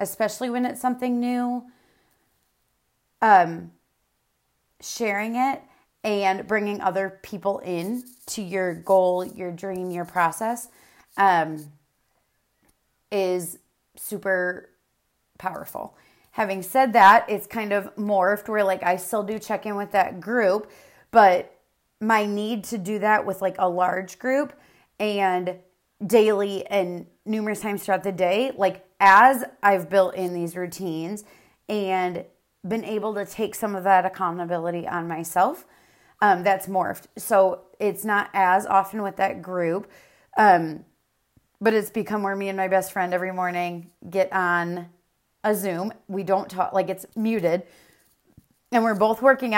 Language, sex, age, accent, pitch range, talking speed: English, female, 30-49, American, 185-215 Hz, 140 wpm